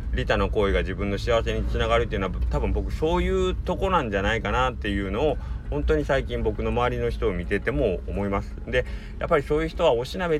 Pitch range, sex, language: 80-120 Hz, male, Japanese